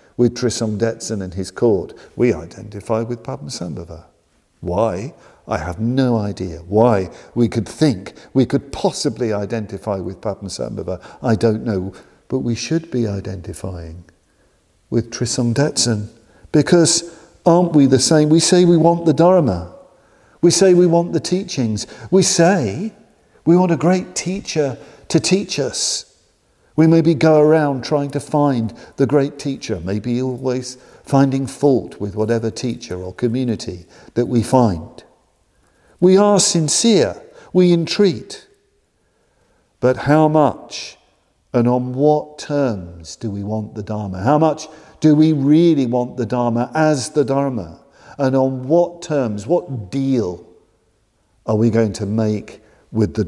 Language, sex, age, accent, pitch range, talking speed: English, male, 50-69, British, 110-155 Hz, 140 wpm